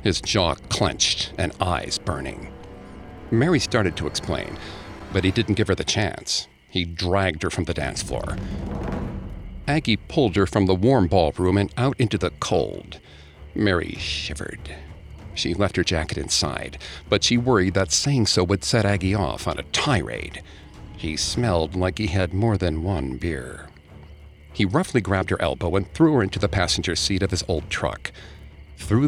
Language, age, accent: English, 50-69, American